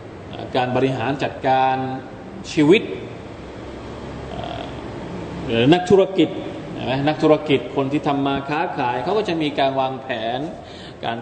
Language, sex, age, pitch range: Thai, male, 20-39, 125-150 Hz